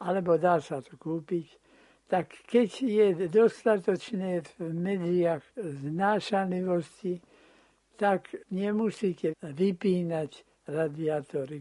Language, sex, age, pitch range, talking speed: Slovak, male, 60-79, 155-190 Hz, 85 wpm